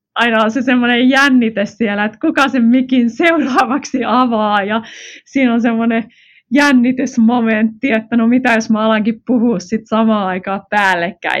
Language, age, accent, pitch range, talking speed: Finnish, 20-39, native, 175-245 Hz, 145 wpm